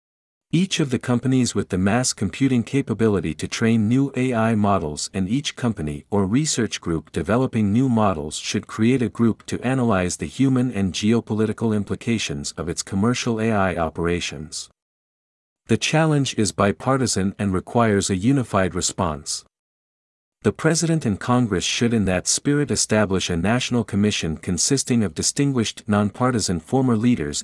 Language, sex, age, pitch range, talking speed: Vietnamese, male, 50-69, 90-125 Hz, 145 wpm